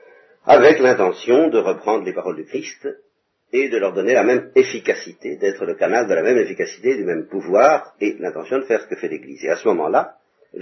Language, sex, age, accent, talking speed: French, male, 50-69, French, 215 wpm